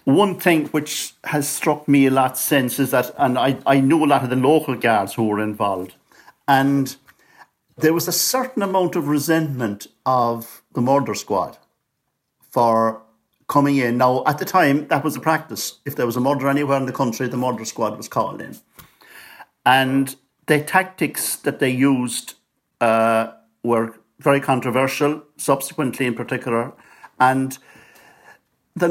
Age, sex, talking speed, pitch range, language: 60-79, male, 160 wpm, 115-145 Hz, English